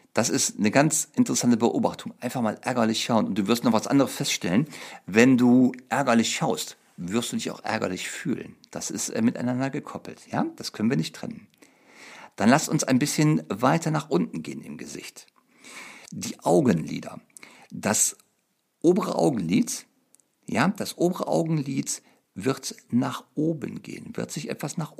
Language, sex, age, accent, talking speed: German, male, 50-69, German, 155 wpm